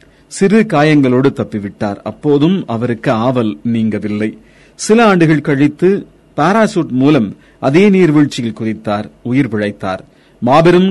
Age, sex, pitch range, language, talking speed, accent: 40-59, male, 120-160 Hz, Tamil, 100 wpm, native